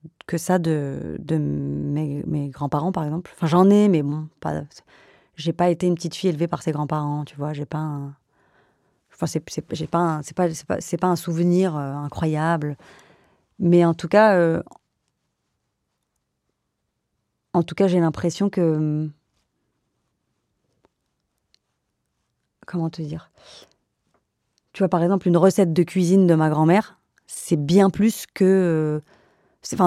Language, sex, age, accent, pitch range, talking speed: French, female, 30-49, French, 155-180 Hz, 160 wpm